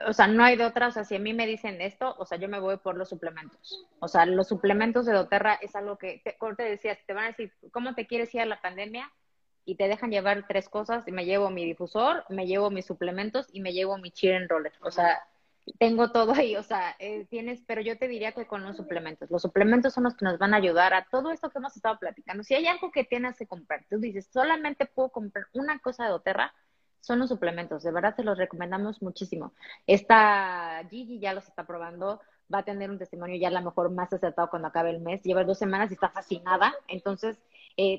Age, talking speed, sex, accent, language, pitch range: 30-49, 245 wpm, female, Mexican, Spanish, 185-230 Hz